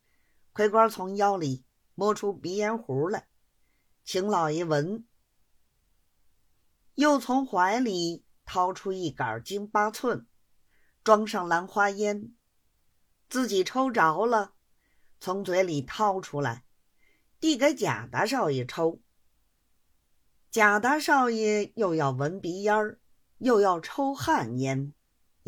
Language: Chinese